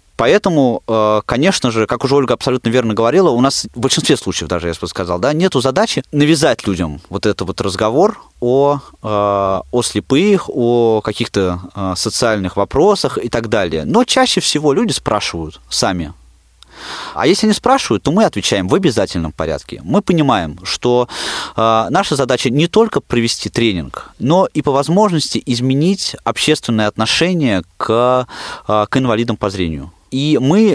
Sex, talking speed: male, 145 wpm